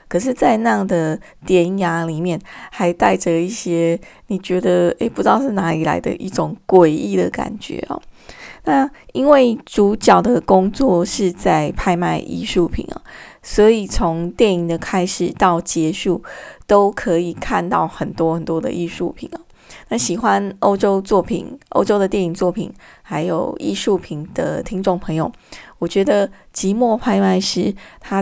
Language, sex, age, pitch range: Chinese, female, 20-39, 175-220 Hz